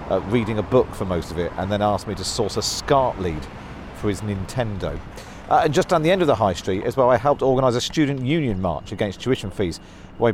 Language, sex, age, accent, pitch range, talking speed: English, male, 40-59, British, 95-145 Hz, 250 wpm